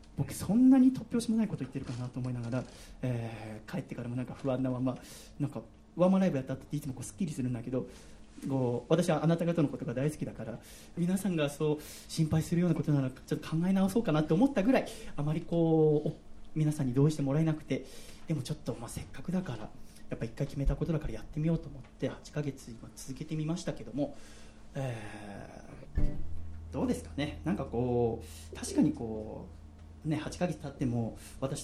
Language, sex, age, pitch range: Japanese, male, 30-49, 115-155 Hz